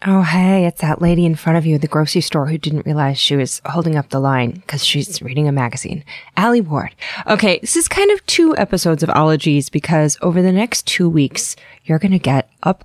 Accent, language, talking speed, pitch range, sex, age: American, English, 230 wpm, 155-210 Hz, female, 20-39